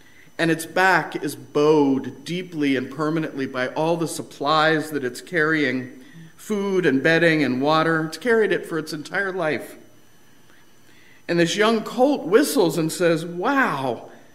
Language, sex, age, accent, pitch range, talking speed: English, male, 50-69, American, 155-215 Hz, 145 wpm